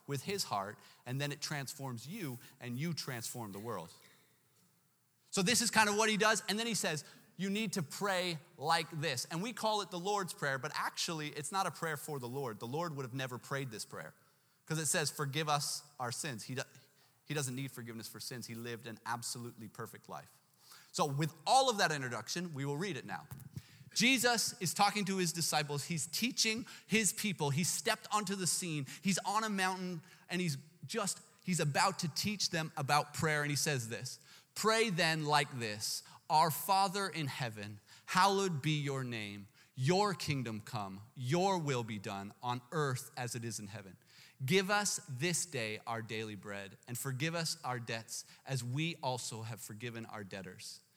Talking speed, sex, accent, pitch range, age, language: 195 wpm, male, American, 125-180 Hz, 30-49, English